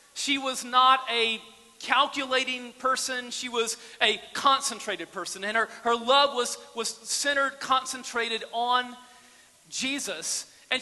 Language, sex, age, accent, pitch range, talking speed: English, male, 40-59, American, 190-265 Hz, 120 wpm